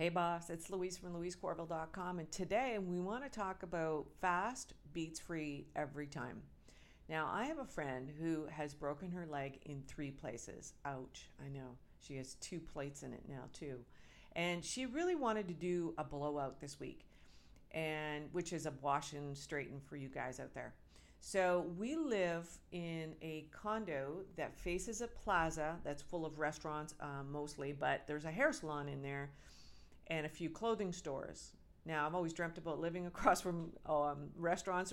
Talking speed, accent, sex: 175 wpm, American, female